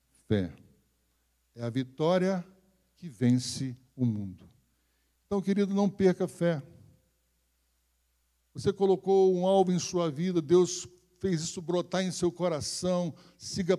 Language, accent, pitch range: Portuguese, Brazilian, 120-185 Hz